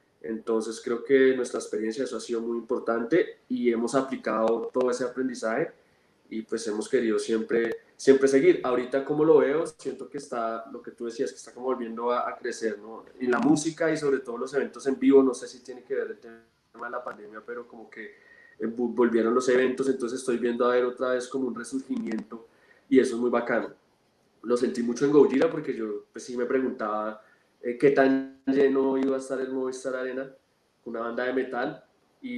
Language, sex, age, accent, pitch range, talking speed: Spanish, male, 20-39, Colombian, 115-135 Hz, 205 wpm